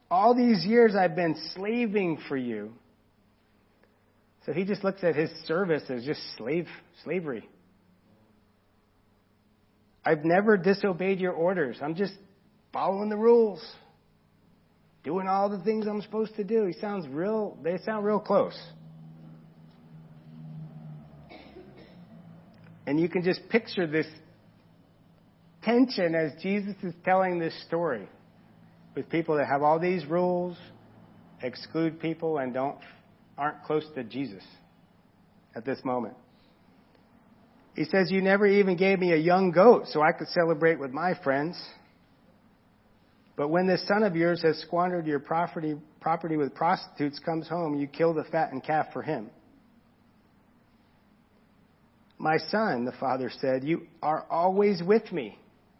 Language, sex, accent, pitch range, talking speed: English, male, American, 140-195 Hz, 135 wpm